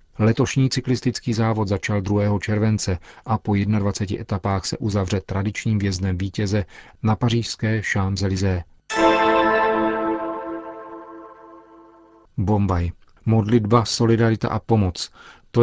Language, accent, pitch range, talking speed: Czech, native, 95-110 Hz, 90 wpm